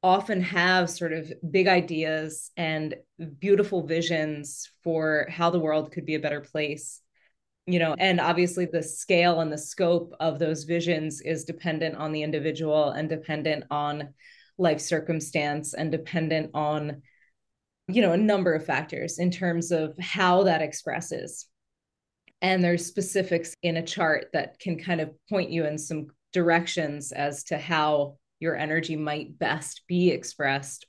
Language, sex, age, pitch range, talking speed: English, female, 20-39, 155-180 Hz, 155 wpm